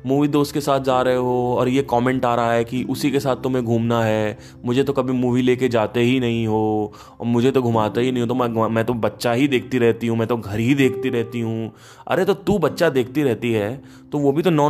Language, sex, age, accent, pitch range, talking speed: Hindi, male, 20-39, native, 115-150 Hz, 265 wpm